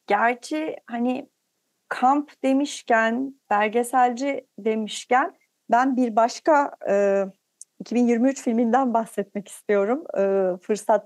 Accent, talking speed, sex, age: native, 75 wpm, female, 40-59